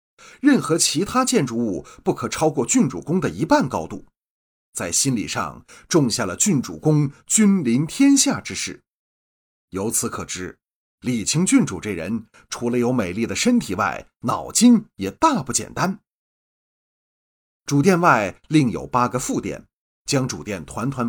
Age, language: 30-49, Chinese